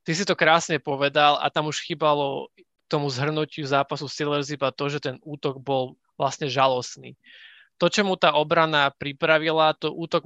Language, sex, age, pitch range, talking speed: Slovak, male, 20-39, 140-165 Hz, 170 wpm